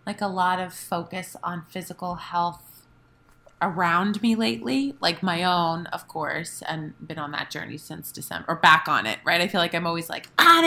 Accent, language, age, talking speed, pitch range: American, English, 20-39, 195 wpm, 155-190 Hz